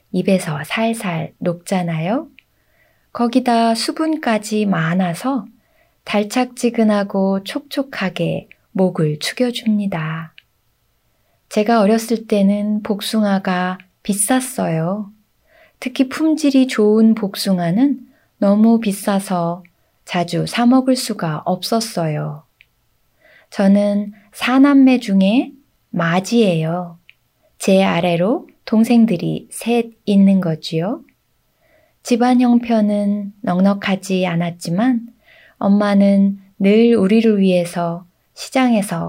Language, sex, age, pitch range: Korean, female, 20-39, 180-235 Hz